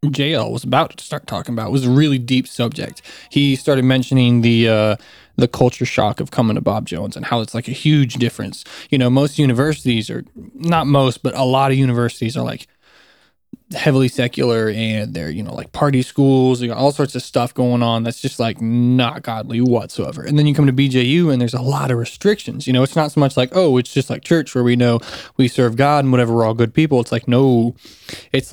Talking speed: 230 wpm